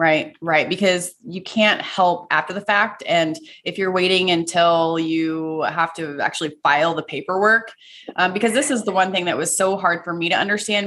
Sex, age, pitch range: female, 20-39, 170-205 Hz